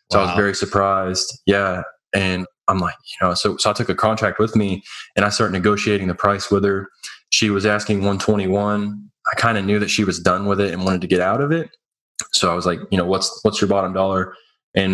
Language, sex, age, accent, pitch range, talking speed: English, male, 20-39, American, 95-105 Hz, 250 wpm